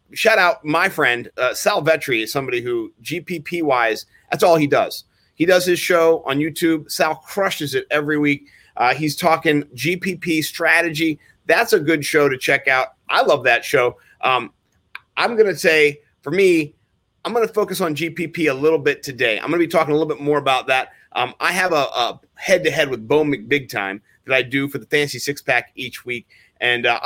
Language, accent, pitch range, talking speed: English, American, 135-165 Hz, 200 wpm